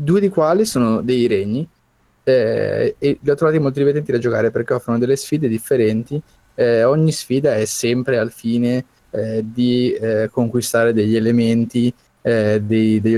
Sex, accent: male, native